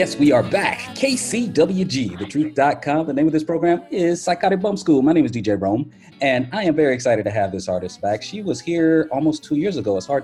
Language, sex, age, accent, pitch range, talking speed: English, male, 30-49, American, 105-145 Hz, 225 wpm